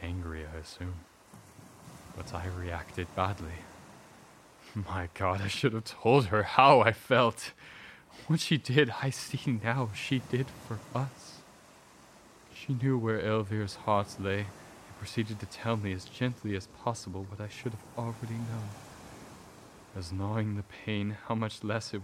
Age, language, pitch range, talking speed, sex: 20-39, English, 95-125 Hz, 155 wpm, male